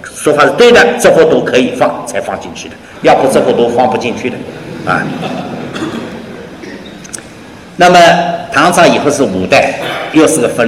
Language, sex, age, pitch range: Chinese, male, 50-69, 180-245 Hz